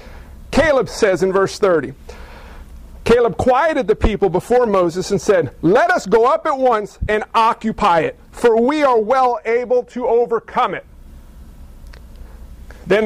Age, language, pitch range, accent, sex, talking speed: 40-59, English, 210-270 Hz, American, male, 145 wpm